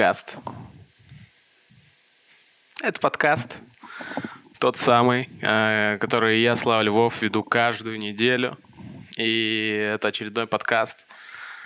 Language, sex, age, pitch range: Russian, male, 20-39, 100-115 Hz